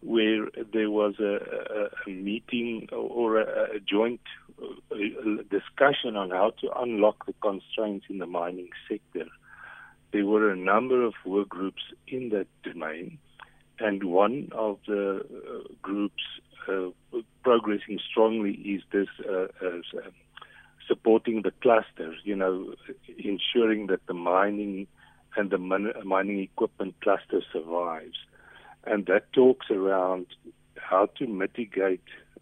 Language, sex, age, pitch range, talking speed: English, male, 50-69, 95-110 Hz, 120 wpm